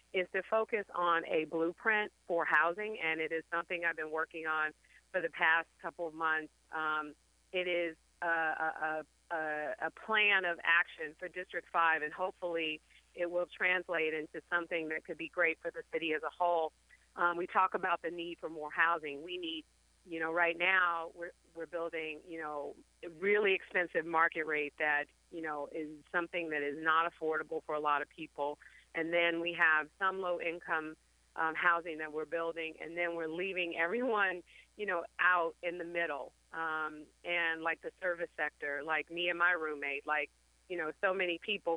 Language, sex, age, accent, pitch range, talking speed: English, female, 40-59, American, 155-175 Hz, 180 wpm